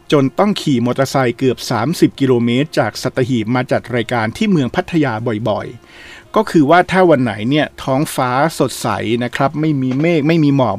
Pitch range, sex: 120-155 Hz, male